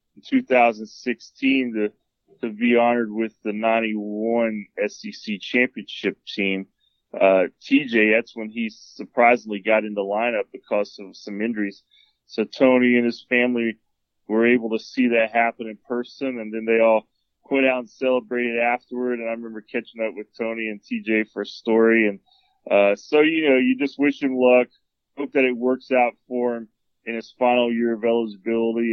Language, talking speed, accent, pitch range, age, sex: English, 170 wpm, American, 110-125 Hz, 20-39, male